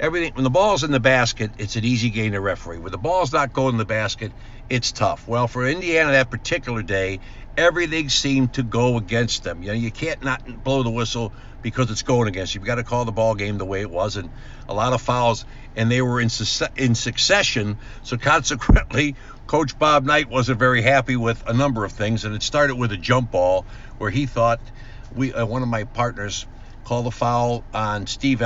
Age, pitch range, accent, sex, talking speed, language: 60-79, 110-130 Hz, American, male, 220 wpm, English